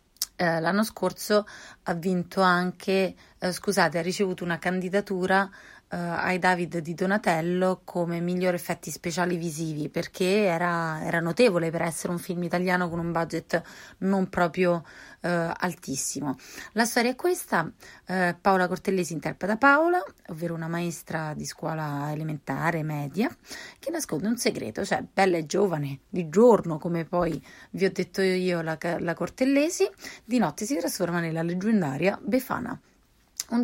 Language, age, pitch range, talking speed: Italian, 30-49, 170-205 Hz, 145 wpm